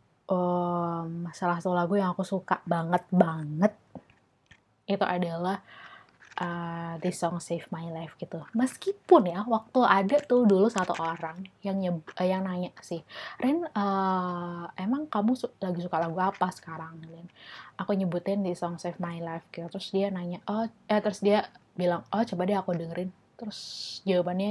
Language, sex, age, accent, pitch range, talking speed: Indonesian, female, 20-39, native, 175-210 Hz, 160 wpm